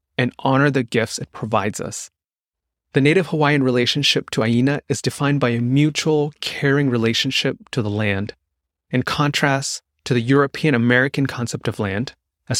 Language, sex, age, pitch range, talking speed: English, male, 30-49, 110-140 Hz, 150 wpm